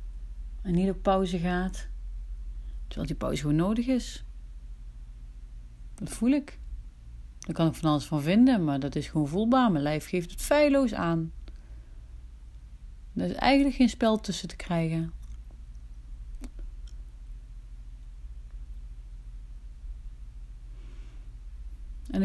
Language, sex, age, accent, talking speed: Dutch, female, 40-59, Dutch, 110 wpm